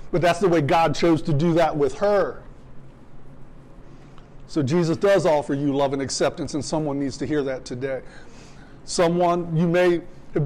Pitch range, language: 140-180 Hz, English